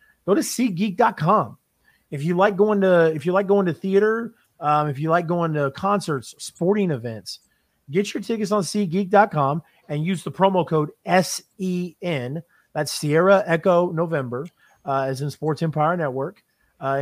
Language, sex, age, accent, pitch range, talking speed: English, male, 30-49, American, 135-180 Hz, 160 wpm